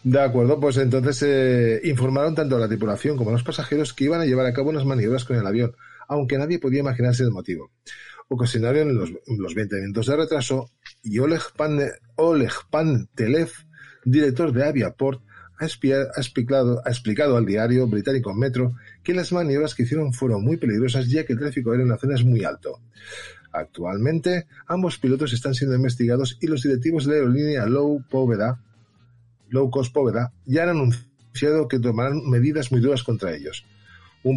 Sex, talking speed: male, 180 wpm